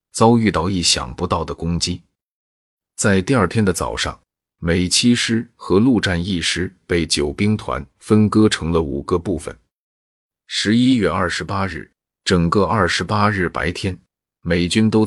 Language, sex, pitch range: Chinese, male, 85-105 Hz